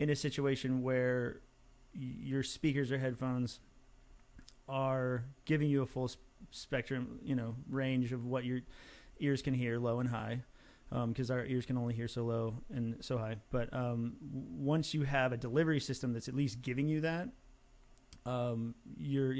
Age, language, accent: 30-49, English, American